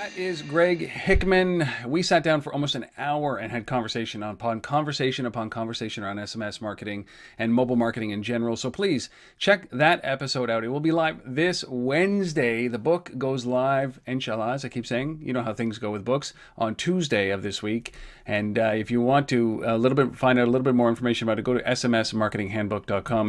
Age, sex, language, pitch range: 40-59, male, English, 115-165 Hz